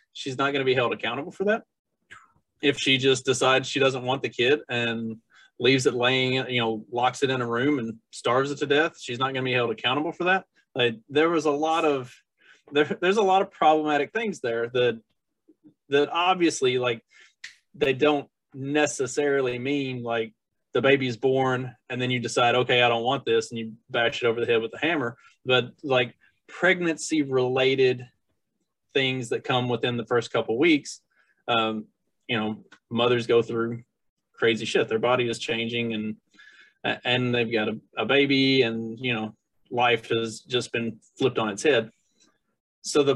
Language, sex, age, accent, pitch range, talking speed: English, male, 30-49, American, 120-150 Hz, 180 wpm